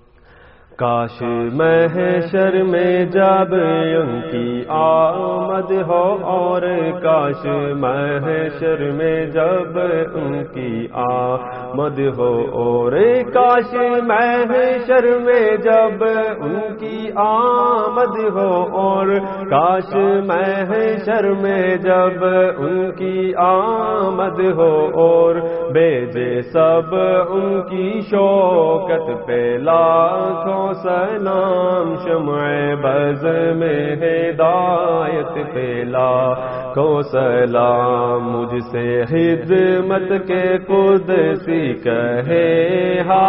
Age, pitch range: 40-59, 145-195 Hz